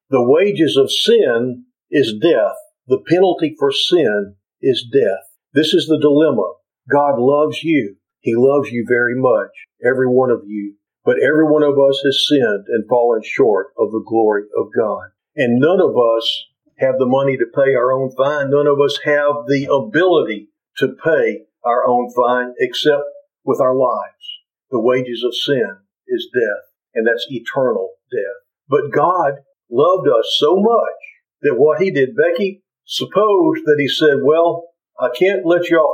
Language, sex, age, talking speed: English, male, 50-69, 170 wpm